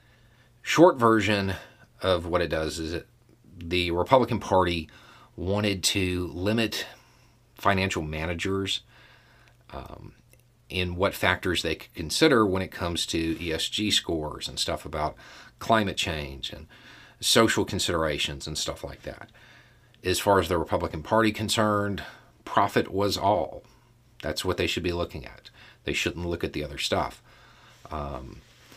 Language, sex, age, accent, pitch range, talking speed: English, male, 40-59, American, 80-115 Hz, 140 wpm